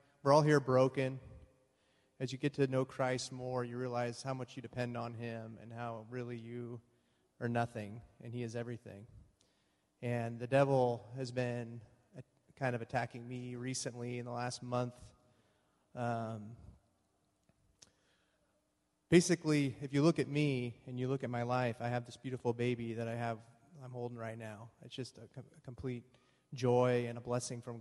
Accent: American